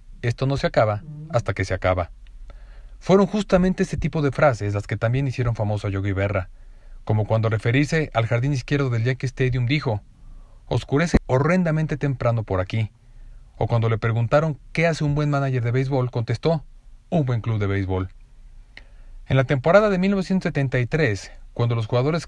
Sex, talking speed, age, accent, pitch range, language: male, 165 wpm, 40-59, Mexican, 110-140 Hz, Spanish